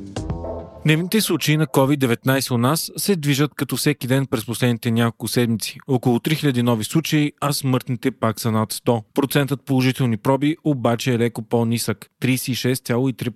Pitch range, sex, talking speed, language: 120-145 Hz, male, 150 wpm, Bulgarian